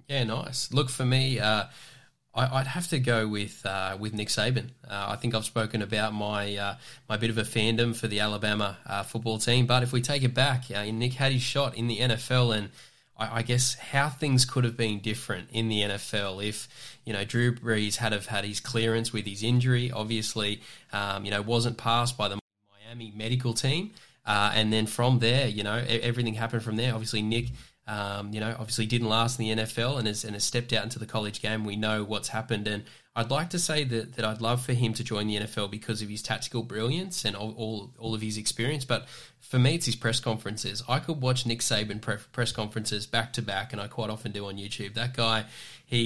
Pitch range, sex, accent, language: 105-125 Hz, male, Australian, English